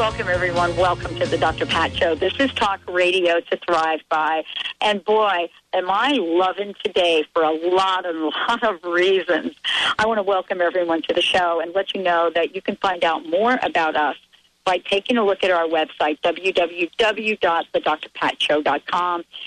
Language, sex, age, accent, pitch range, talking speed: English, female, 50-69, American, 170-200 Hz, 175 wpm